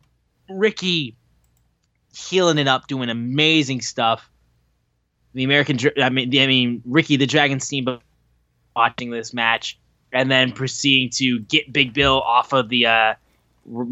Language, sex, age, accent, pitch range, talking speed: English, male, 20-39, American, 115-155 Hz, 140 wpm